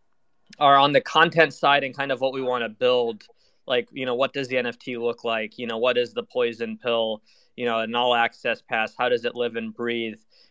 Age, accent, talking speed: 20-39, American, 230 wpm